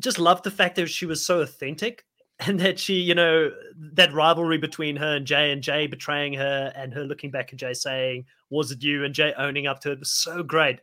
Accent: Australian